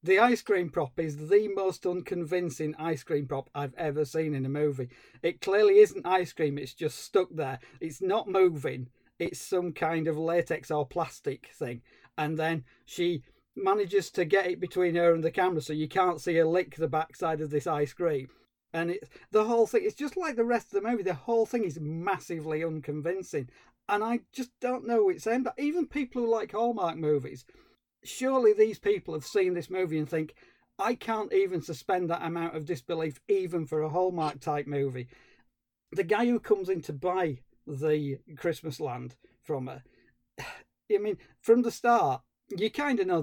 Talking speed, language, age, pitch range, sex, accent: 190 wpm, English, 40-59, 150-210 Hz, male, British